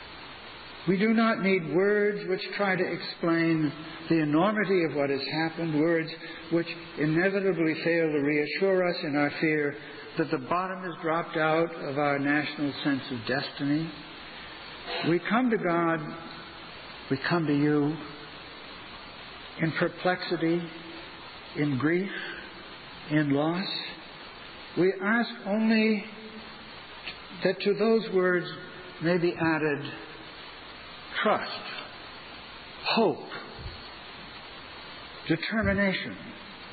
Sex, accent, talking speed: male, American, 105 wpm